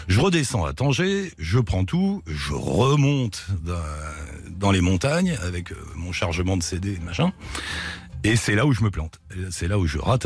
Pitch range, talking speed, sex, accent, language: 85-120 Hz, 180 wpm, male, French, French